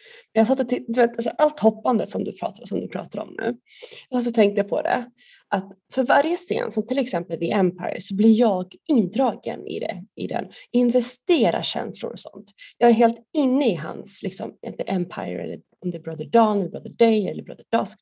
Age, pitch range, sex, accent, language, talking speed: 30-49, 210-295 Hz, female, native, Swedish, 195 wpm